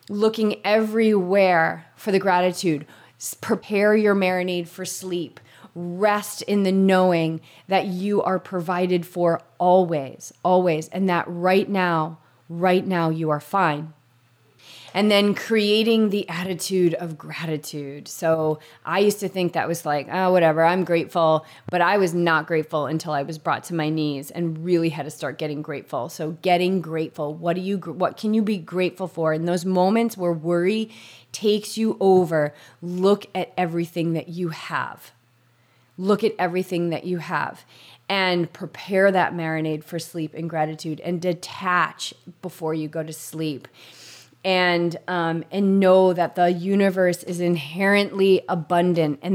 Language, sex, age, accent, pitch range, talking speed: English, female, 30-49, American, 160-190 Hz, 155 wpm